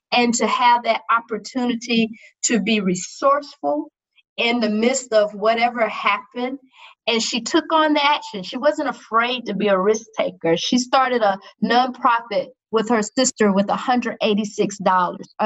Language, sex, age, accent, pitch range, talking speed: English, female, 40-59, American, 215-265 Hz, 145 wpm